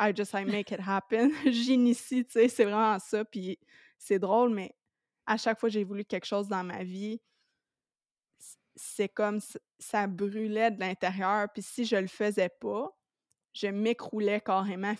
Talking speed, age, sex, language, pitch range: 175 wpm, 20-39, female, French, 190-220 Hz